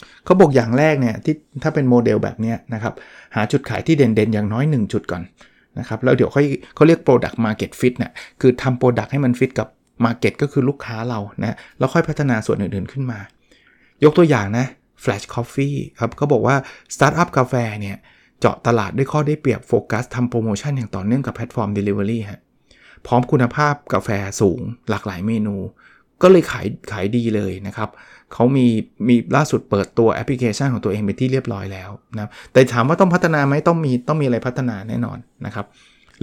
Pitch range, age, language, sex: 110-140 Hz, 20-39, Thai, male